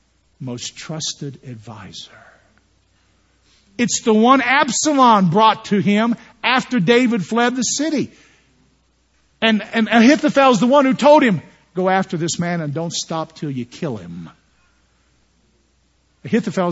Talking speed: 130 wpm